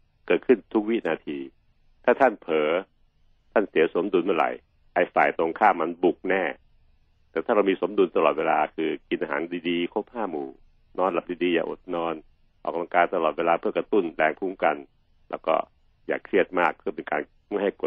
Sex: male